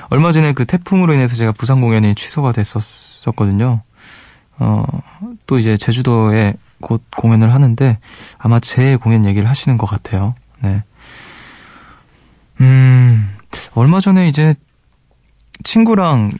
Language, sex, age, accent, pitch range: Korean, male, 20-39, native, 110-150 Hz